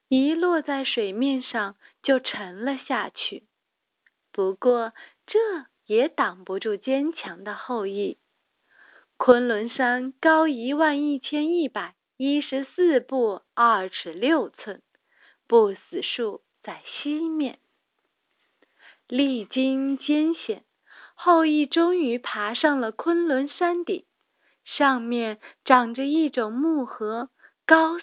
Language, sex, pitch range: Chinese, female, 225-300 Hz